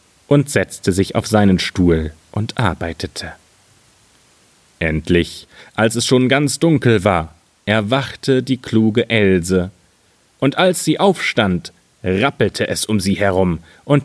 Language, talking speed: German, 125 wpm